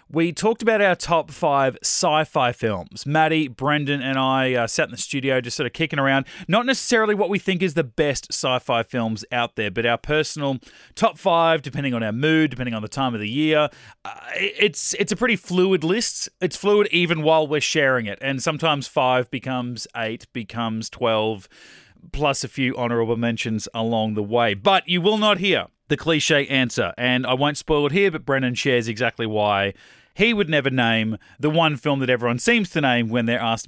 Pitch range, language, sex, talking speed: 120-165 Hz, English, male, 200 wpm